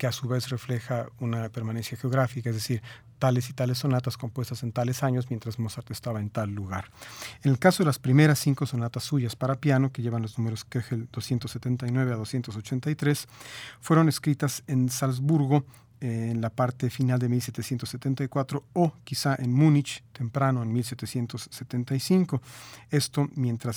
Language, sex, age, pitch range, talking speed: Spanish, male, 40-59, 120-135 Hz, 155 wpm